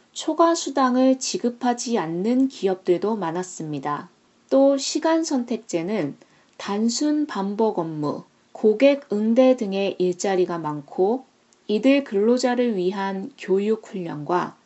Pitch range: 185-255 Hz